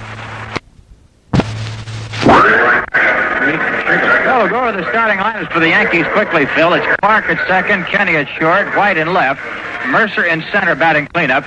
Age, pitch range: 60-79, 145-205 Hz